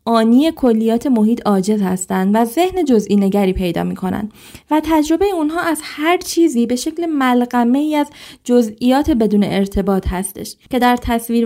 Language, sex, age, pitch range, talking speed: Persian, female, 20-39, 205-270 Hz, 150 wpm